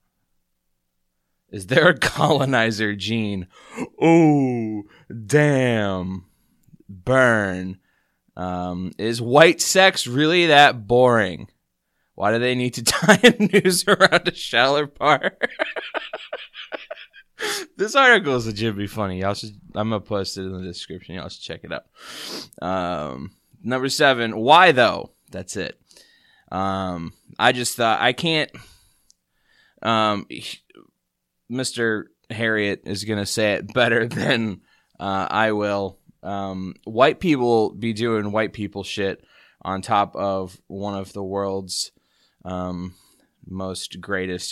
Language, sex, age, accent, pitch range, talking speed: English, male, 20-39, American, 95-125 Hz, 125 wpm